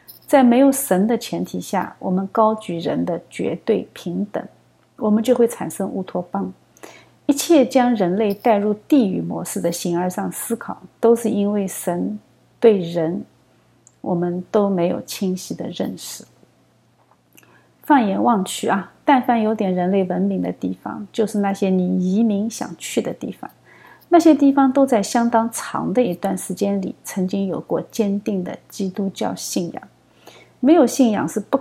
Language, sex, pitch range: Chinese, female, 185-235 Hz